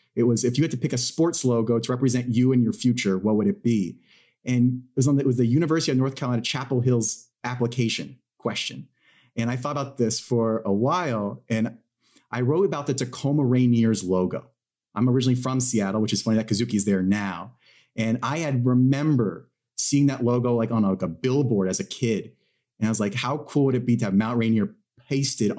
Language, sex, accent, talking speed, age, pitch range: English, male, American, 220 wpm, 30-49, 110-130 Hz